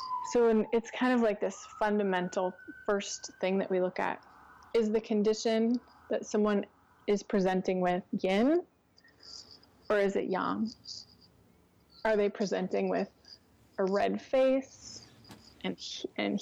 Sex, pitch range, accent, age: female, 185-225 Hz, American, 20-39